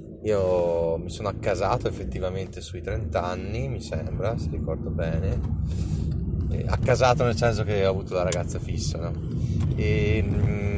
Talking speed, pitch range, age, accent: 145 wpm, 80-115 Hz, 30-49, native